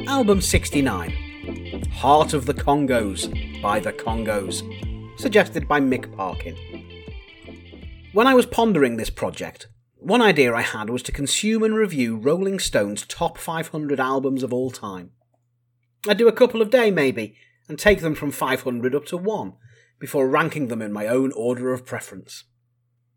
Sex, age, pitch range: male, 30-49, 120-170 Hz